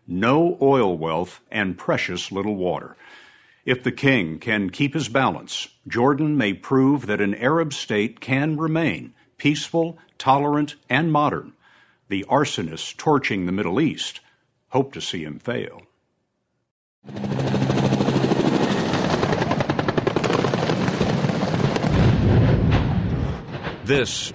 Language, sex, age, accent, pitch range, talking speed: English, male, 60-79, American, 100-135 Hz, 95 wpm